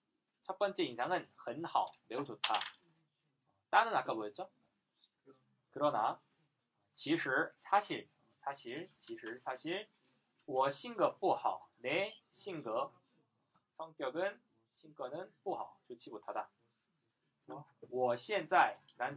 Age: 20-39